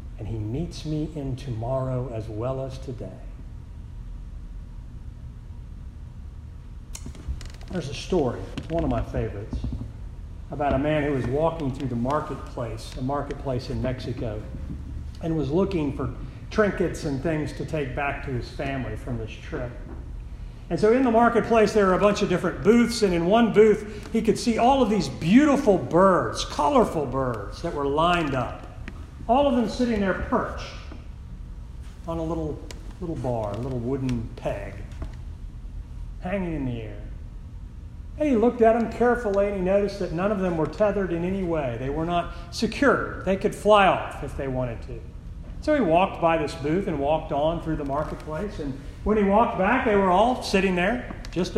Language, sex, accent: English, male, American